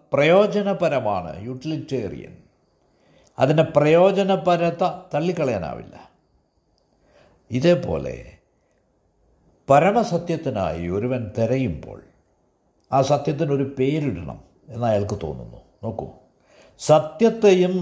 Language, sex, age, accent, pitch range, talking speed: Malayalam, male, 60-79, native, 125-175 Hz, 55 wpm